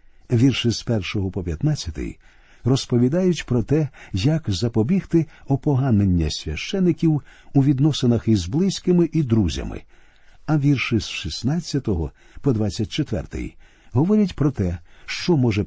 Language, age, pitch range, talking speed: Ukrainian, 50-69, 105-145 Hz, 110 wpm